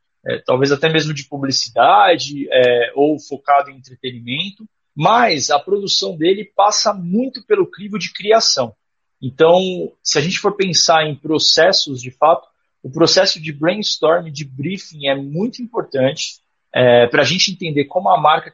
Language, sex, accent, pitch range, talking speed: Portuguese, male, Brazilian, 140-185 Hz, 155 wpm